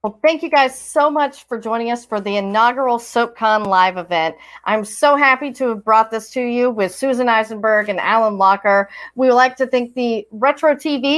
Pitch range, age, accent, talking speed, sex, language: 225-295 Hz, 40-59, American, 200 wpm, female, English